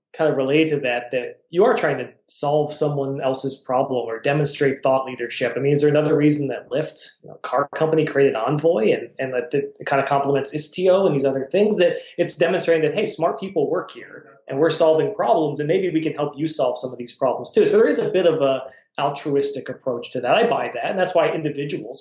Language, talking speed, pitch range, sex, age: English, 240 wpm, 130-160 Hz, male, 20-39